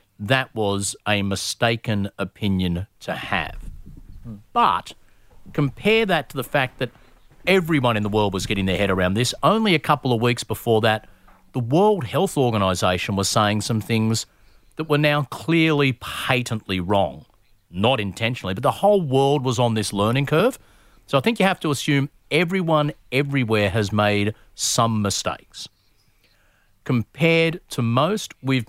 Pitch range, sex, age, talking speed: 105-140 Hz, male, 40-59, 155 wpm